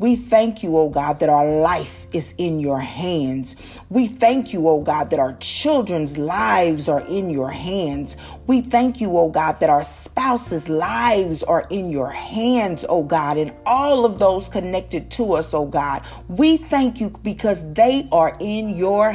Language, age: English, 40-59